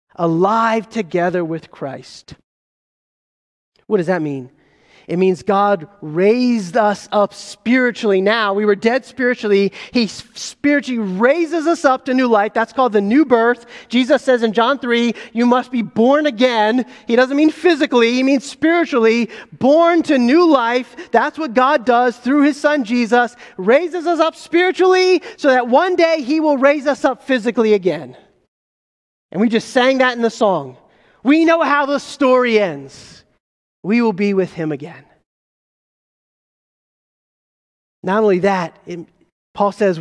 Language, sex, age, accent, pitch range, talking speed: English, male, 30-49, American, 200-275 Hz, 155 wpm